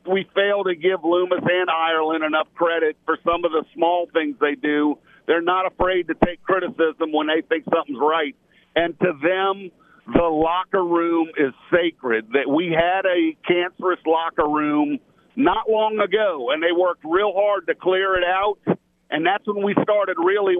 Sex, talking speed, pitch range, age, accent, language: male, 180 wpm, 160-195 Hz, 50-69, American, English